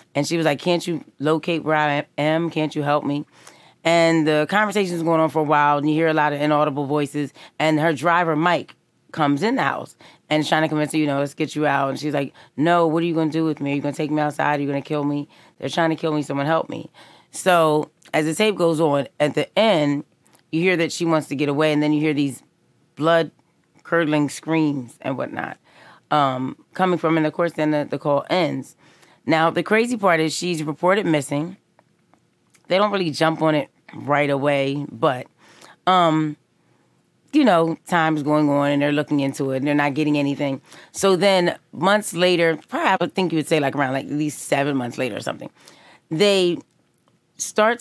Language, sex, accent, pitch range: English, female, American, 145-170 Hz